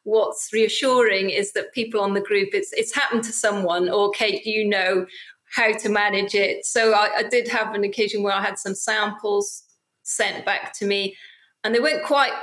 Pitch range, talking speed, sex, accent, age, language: 200-240 Hz, 200 wpm, female, British, 30-49, English